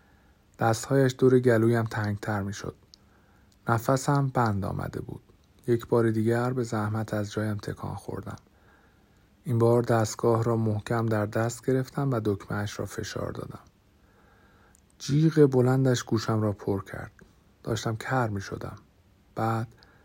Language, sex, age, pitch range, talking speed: Persian, male, 50-69, 100-115 Hz, 125 wpm